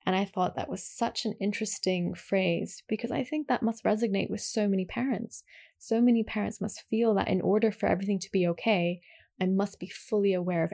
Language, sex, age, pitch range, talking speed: English, female, 20-39, 185-220 Hz, 210 wpm